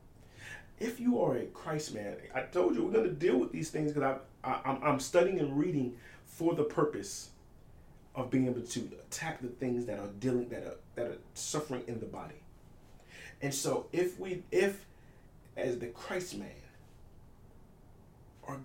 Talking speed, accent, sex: 175 wpm, American, male